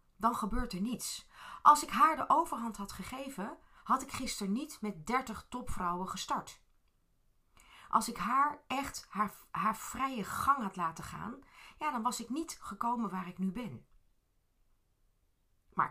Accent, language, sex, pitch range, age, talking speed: Dutch, Dutch, female, 135-215 Hz, 30-49, 155 wpm